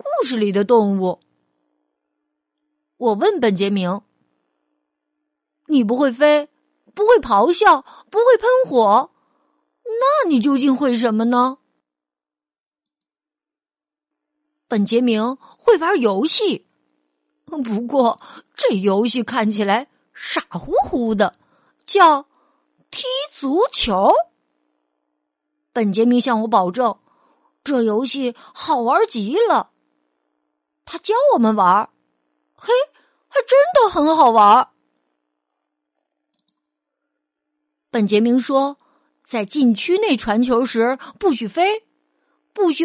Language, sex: Chinese, female